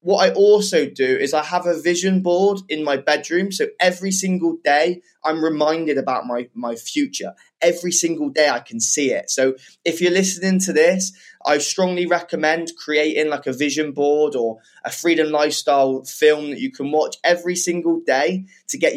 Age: 20-39